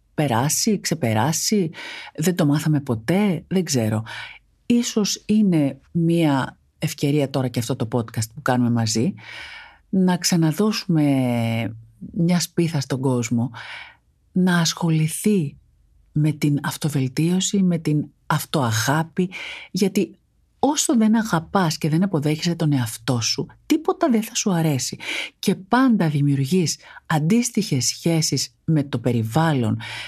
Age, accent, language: 50-69, native, Greek